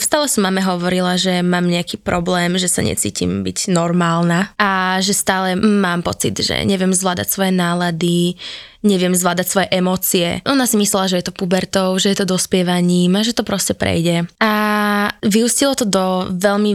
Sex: female